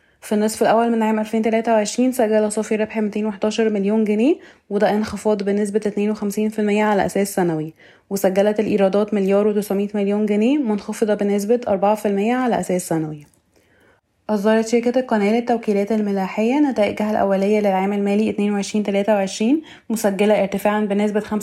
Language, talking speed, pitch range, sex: Arabic, 125 wpm, 200-220 Hz, female